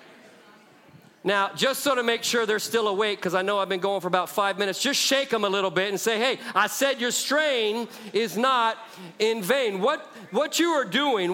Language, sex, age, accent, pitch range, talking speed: English, male, 40-59, American, 185-240 Hz, 215 wpm